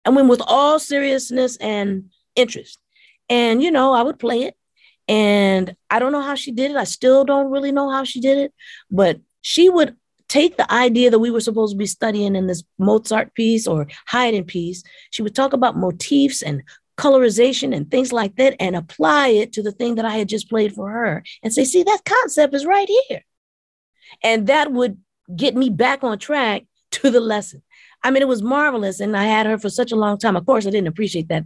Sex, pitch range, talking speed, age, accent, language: female, 180-255 Hz, 220 wpm, 40-59, American, English